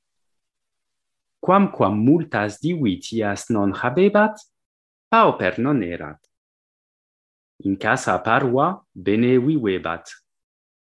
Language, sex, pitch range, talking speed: French, male, 95-150 Hz, 70 wpm